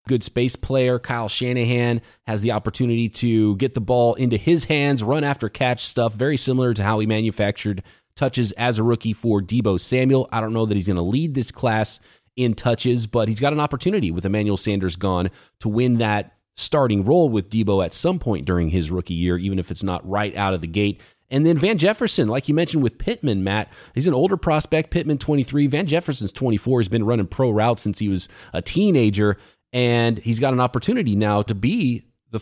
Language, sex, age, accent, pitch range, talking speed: English, male, 30-49, American, 105-135 Hz, 215 wpm